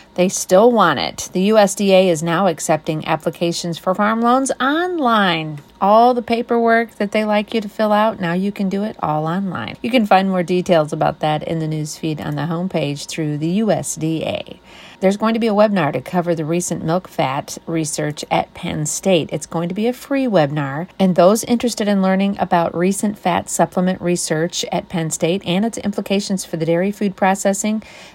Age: 40-59